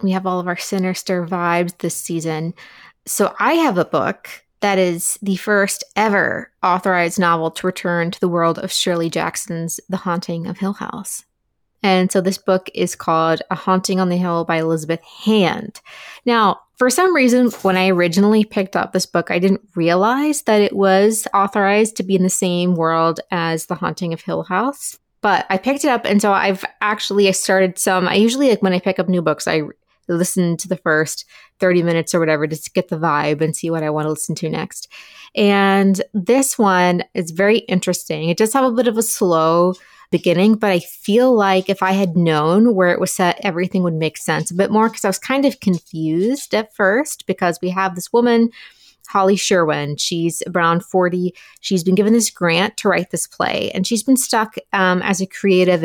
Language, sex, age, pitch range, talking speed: English, female, 20-39, 175-210 Hz, 205 wpm